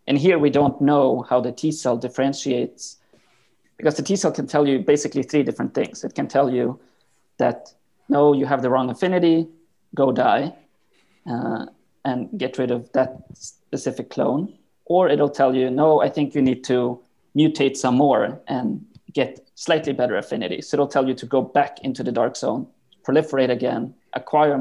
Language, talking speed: English, 180 wpm